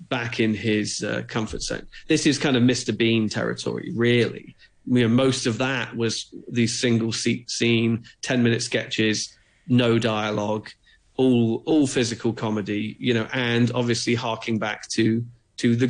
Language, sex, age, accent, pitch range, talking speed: English, male, 40-59, British, 115-155 Hz, 160 wpm